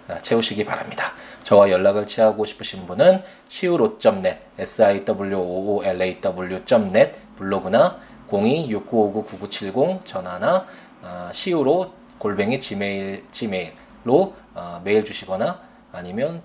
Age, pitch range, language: 20-39, 95-135 Hz, Korean